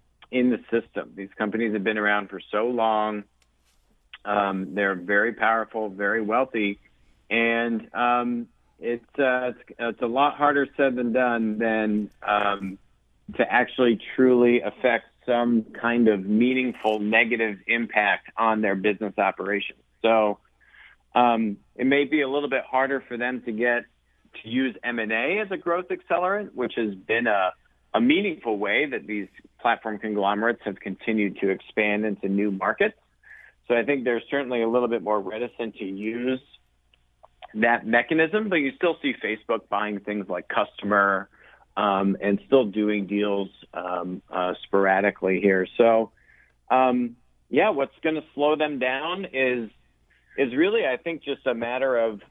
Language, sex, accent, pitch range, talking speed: English, male, American, 100-125 Hz, 155 wpm